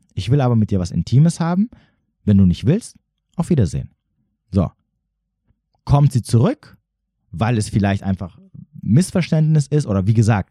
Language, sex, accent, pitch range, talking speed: German, male, German, 100-150 Hz, 155 wpm